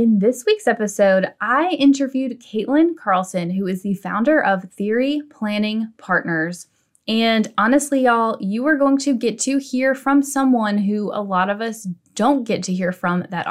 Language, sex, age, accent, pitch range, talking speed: English, female, 10-29, American, 190-250 Hz, 175 wpm